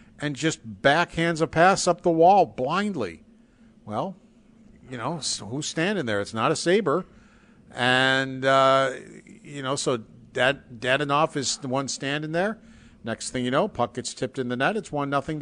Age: 50-69